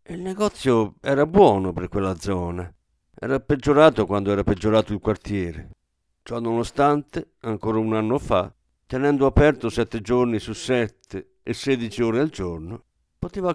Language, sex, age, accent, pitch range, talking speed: Italian, male, 50-69, native, 95-140 Hz, 140 wpm